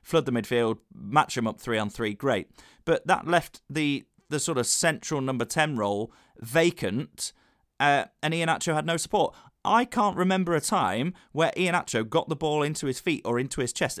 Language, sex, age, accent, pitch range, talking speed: English, male, 30-49, British, 120-160 Hz, 195 wpm